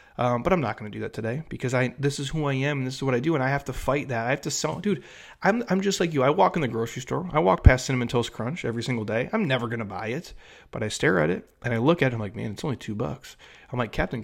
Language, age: English, 30-49